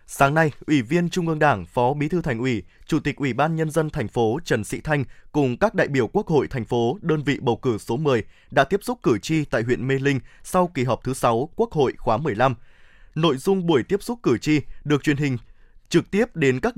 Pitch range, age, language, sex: 130-170 Hz, 20-39, Vietnamese, male